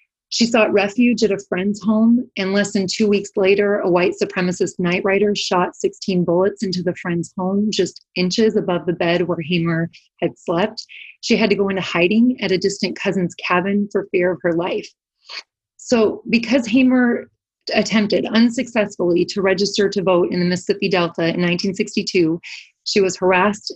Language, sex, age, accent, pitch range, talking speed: English, female, 30-49, American, 180-210 Hz, 170 wpm